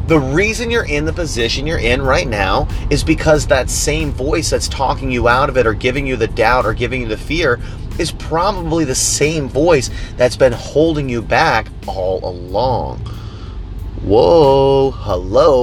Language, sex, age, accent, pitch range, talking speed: English, male, 30-49, American, 100-130 Hz, 175 wpm